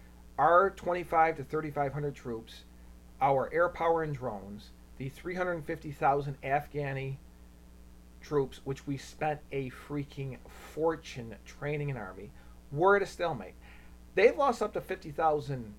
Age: 40-59